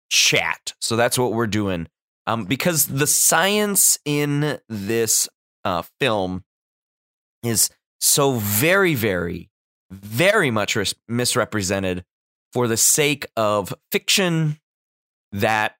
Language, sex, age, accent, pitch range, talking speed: English, male, 20-39, American, 95-160 Hz, 105 wpm